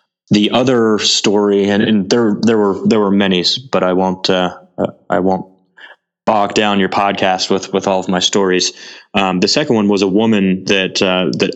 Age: 20-39